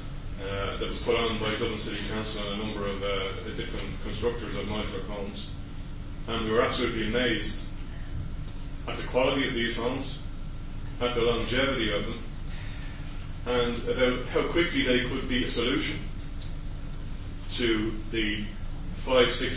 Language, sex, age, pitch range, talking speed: English, male, 30-49, 100-125 Hz, 150 wpm